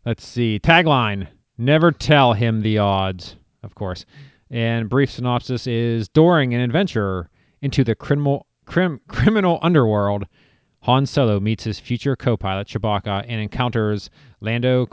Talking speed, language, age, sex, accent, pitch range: 135 wpm, English, 30-49, male, American, 110-155 Hz